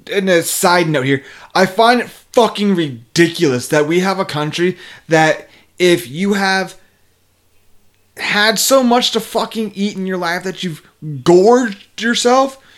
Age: 30-49